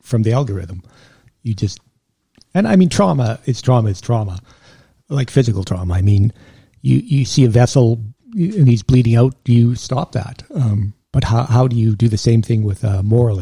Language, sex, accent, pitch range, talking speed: English, male, American, 105-130 Hz, 195 wpm